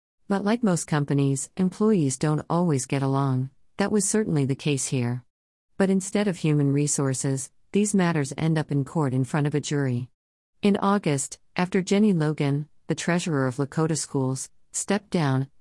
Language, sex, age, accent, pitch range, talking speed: English, female, 50-69, American, 135-170 Hz, 165 wpm